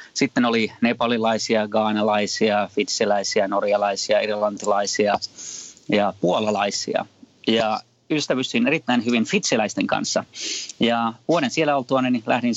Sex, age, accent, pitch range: male, 30-49, native, 105-120 Hz